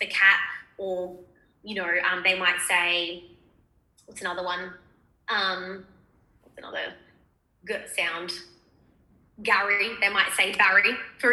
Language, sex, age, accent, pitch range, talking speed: English, female, 20-39, Australian, 180-215 Hz, 120 wpm